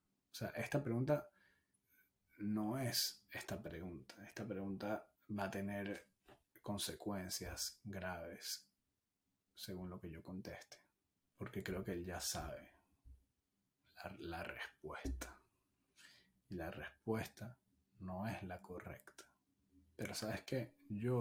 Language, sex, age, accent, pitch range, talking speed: Spanish, male, 30-49, Argentinian, 90-105 Hz, 115 wpm